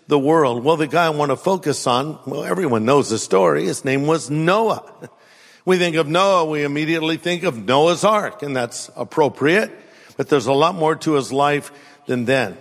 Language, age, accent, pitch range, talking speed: English, 50-69, American, 145-195 Hz, 200 wpm